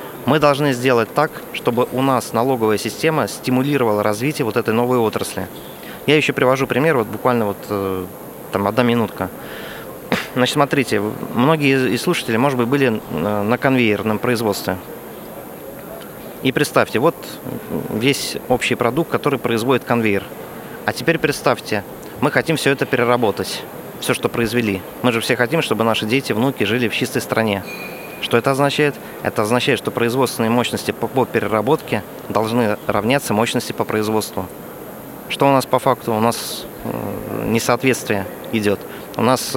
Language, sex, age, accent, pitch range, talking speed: Russian, male, 30-49, native, 110-135 Hz, 145 wpm